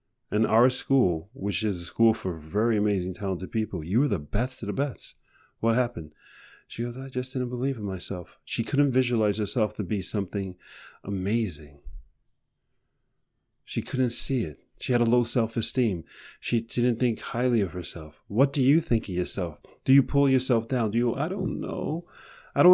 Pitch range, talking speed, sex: 110-140 Hz, 185 wpm, male